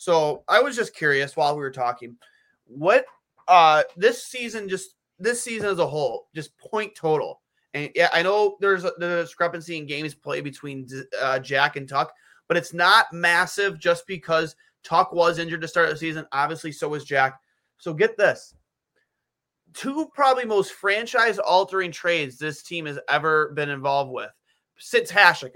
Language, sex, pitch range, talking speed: English, male, 155-210 Hz, 175 wpm